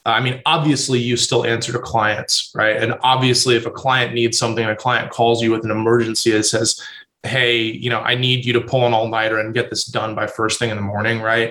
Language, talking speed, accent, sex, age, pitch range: English, 240 wpm, American, male, 20-39, 115-135 Hz